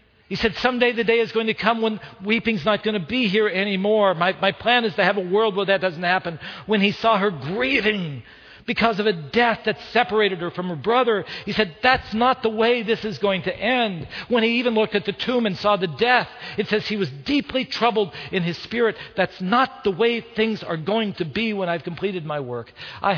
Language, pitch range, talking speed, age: English, 130-210 Hz, 235 wpm, 50-69